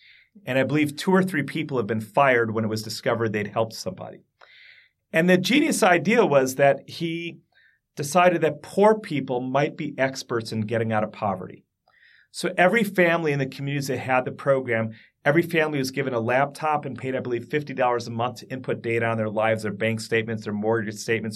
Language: English